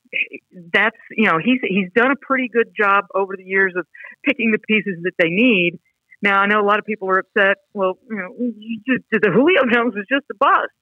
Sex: female